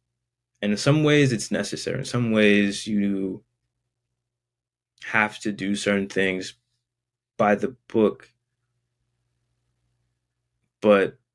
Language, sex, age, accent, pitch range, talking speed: English, male, 20-39, American, 100-120 Hz, 100 wpm